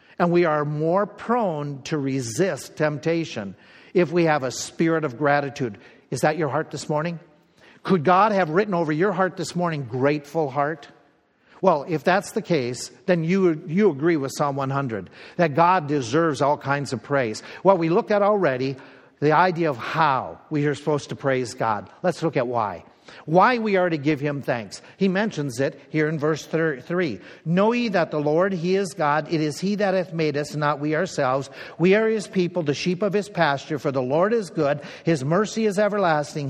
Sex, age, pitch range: male, 50-69, 145-185 Hz